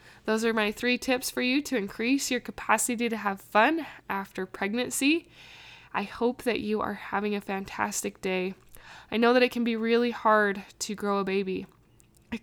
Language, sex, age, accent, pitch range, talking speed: English, female, 10-29, American, 195-230 Hz, 185 wpm